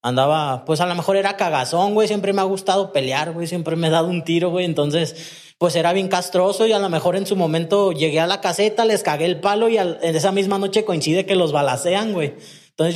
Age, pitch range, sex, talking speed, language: 20-39, 160-210 Hz, male, 245 wpm, Spanish